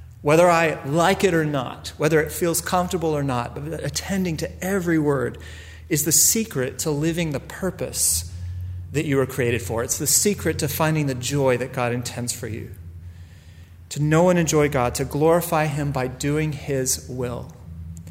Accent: American